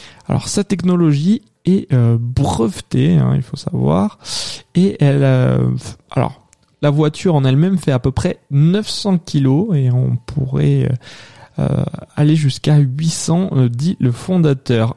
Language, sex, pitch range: French, male, 130-160 Hz